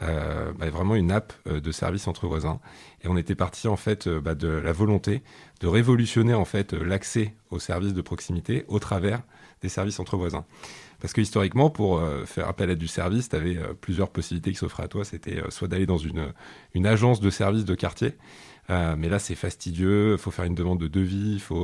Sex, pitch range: male, 85-105 Hz